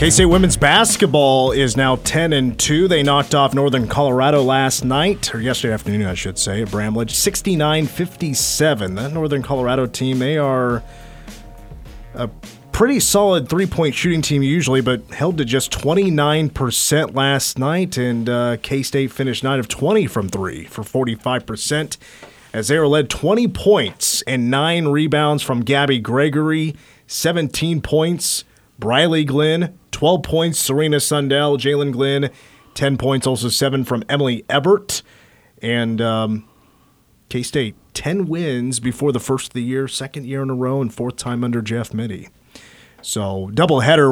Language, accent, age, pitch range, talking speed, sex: English, American, 30-49, 125-155 Hz, 145 wpm, male